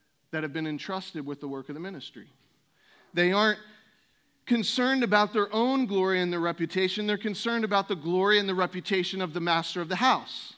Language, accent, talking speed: English, American, 195 wpm